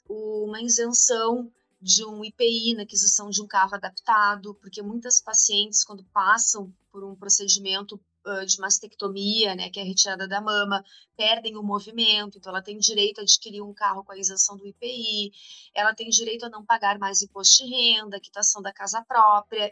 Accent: Brazilian